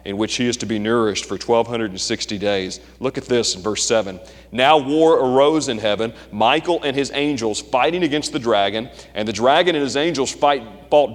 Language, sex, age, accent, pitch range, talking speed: English, male, 30-49, American, 130-175 Hz, 195 wpm